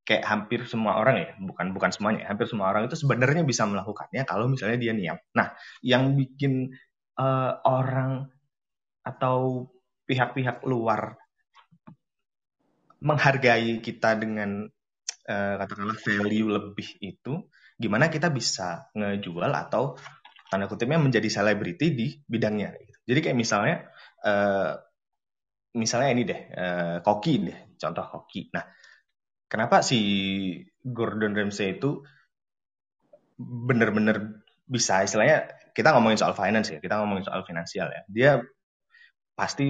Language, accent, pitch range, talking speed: Indonesian, native, 105-130 Hz, 120 wpm